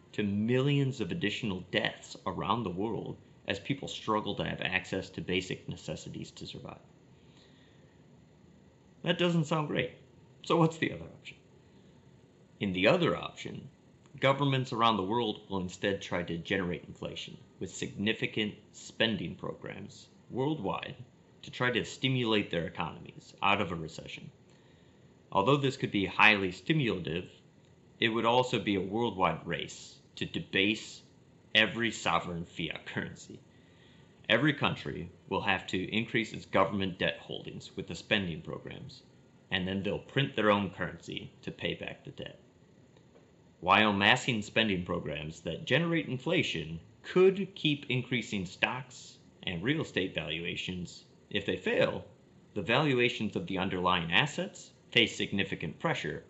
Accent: American